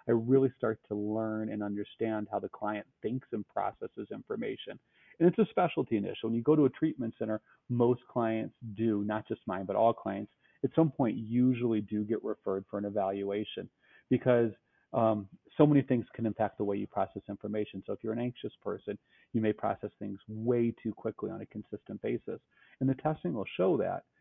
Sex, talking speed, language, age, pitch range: male, 200 wpm, English, 30-49, 105-125 Hz